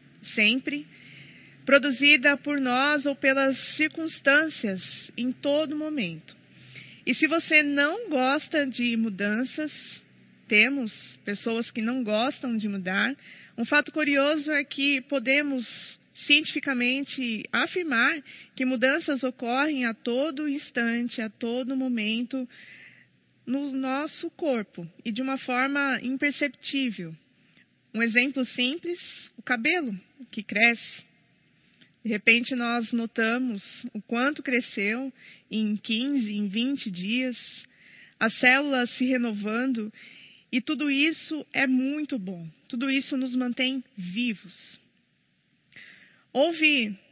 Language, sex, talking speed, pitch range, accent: Portuguese, female, 105 wpm, 230-280 Hz, Brazilian